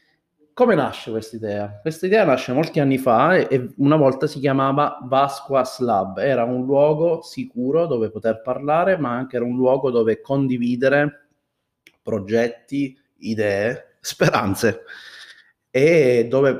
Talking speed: 135 wpm